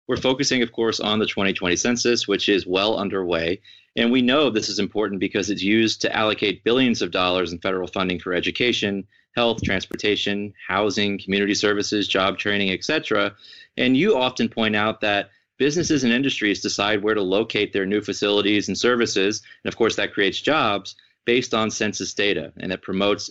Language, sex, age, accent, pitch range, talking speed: English, male, 30-49, American, 100-115 Hz, 180 wpm